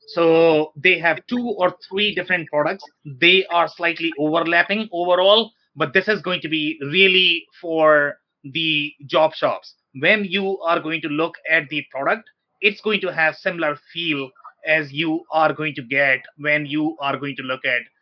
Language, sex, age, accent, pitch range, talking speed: English, male, 30-49, Indian, 145-170 Hz, 175 wpm